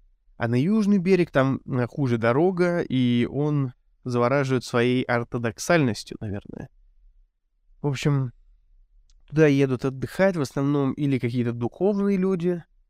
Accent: native